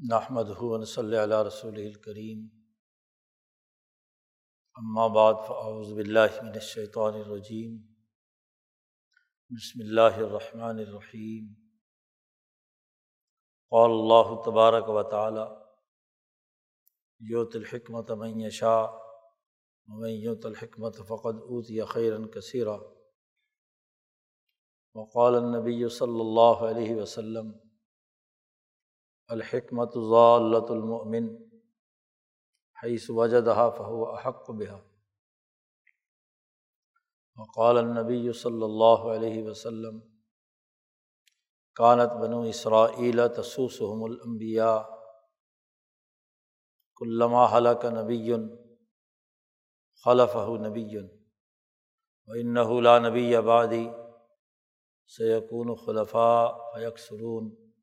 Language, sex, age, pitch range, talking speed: Urdu, male, 50-69, 110-120 Hz, 75 wpm